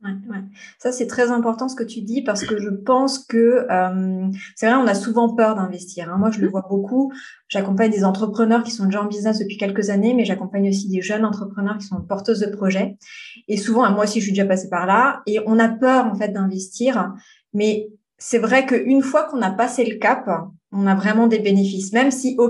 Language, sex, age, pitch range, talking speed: French, female, 20-39, 200-250 Hz, 225 wpm